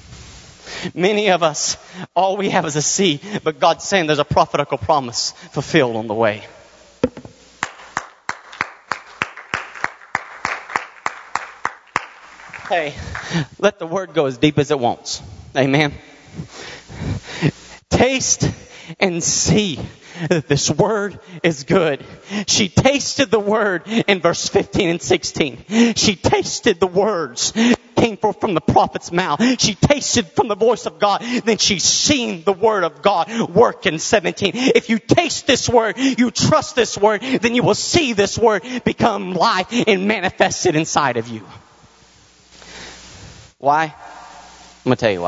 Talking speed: 140 wpm